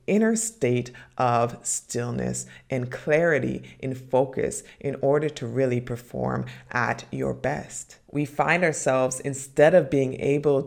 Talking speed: 130 wpm